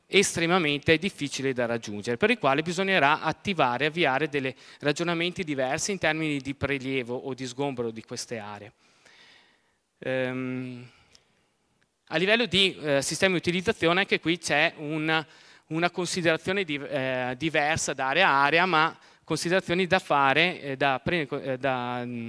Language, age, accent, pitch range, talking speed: Italian, 30-49, native, 135-170 Hz, 145 wpm